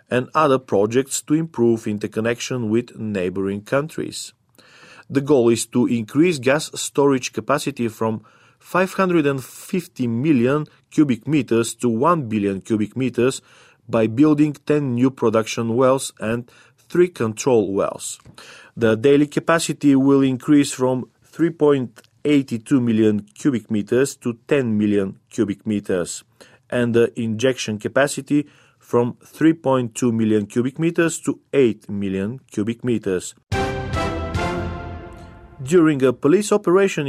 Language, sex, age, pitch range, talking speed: Bulgarian, male, 40-59, 115-150 Hz, 115 wpm